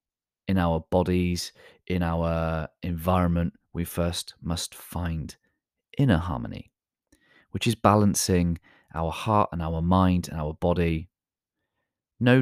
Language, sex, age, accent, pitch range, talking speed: English, male, 30-49, British, 80-95 Hz, 115 wpm